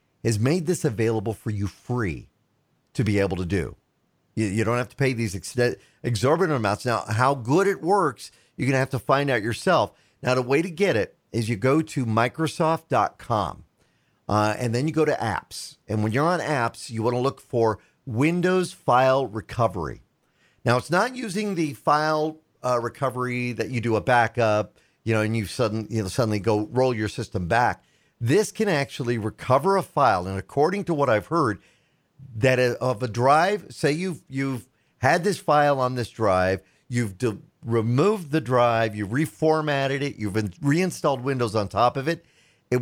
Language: English